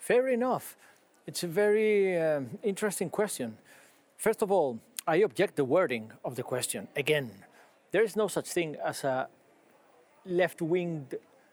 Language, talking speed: Polish, 140 wpm